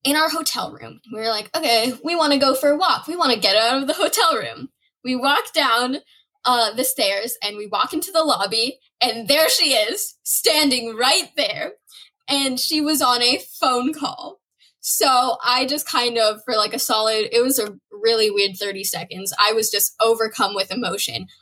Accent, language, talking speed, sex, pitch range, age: American, English, 200 wpm, female, 225-310 Hz, 10-29